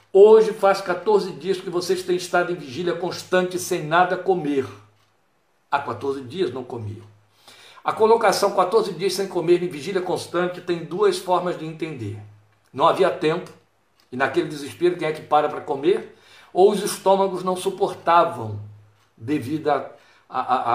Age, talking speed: 60-79, 150 wpm